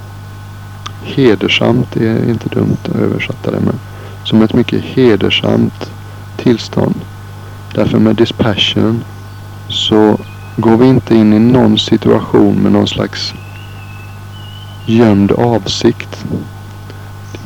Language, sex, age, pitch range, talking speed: Swedish, male, 60-79, 100-110 Hz, 105 wpm